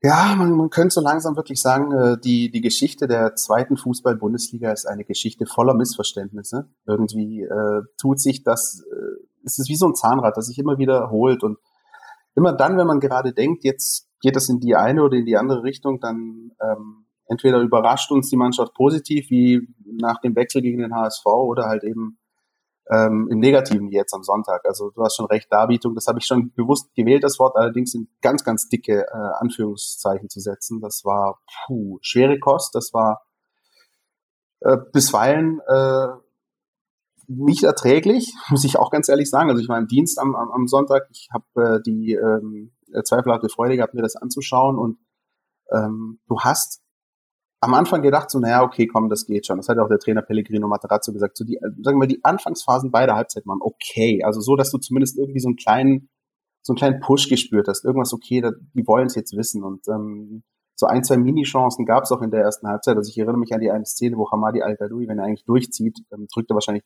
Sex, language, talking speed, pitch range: male, German, 200 wpm, 110-135 Hz